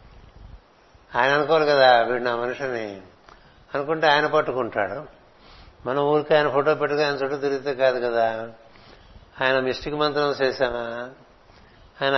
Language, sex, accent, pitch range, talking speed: Telugu, male, native, 120-150 Hz, 120 wpm